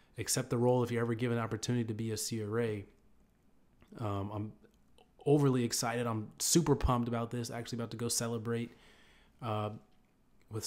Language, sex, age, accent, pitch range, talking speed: English, male, 30-49, American, 105-125 Hz, 165 wpm